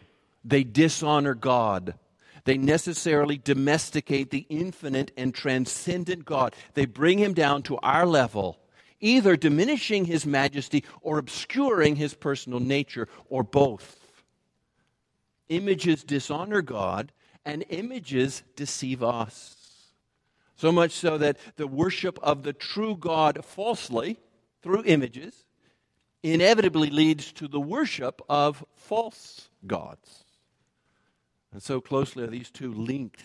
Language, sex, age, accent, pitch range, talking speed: English, male, 50-69, American, 125-165 Hz, 115 wpm